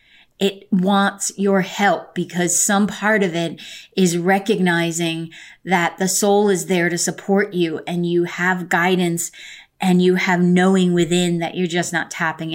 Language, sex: English, female